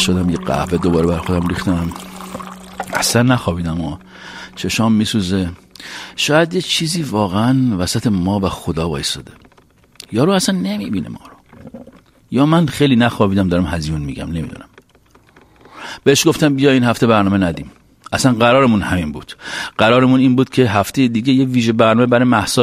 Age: 50-69